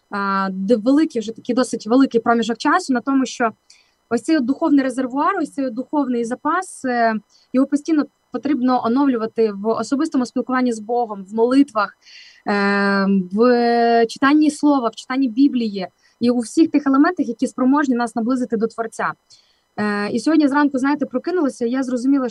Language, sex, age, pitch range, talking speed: Ukrainian, female, 20-39, 225-280 Hz, 145 wpm